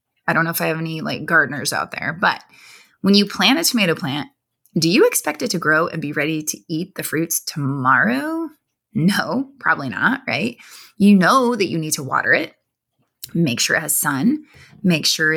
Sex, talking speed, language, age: female, 200 wpm, English, 20-39